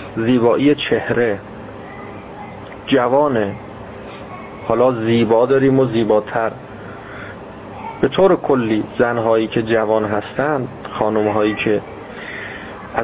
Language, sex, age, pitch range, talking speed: Persian, male, 40-59, 105-140 Hz, 80 wpm